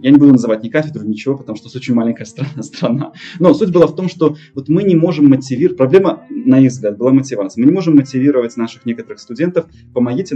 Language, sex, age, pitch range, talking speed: Russian, male, 20-39, 125-160 Hz, 225 wpm